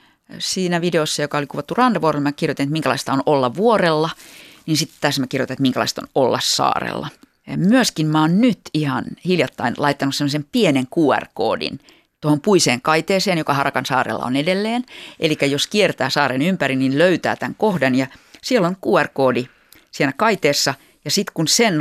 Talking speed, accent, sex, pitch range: 170 wpm, native, female, 140-195 Hz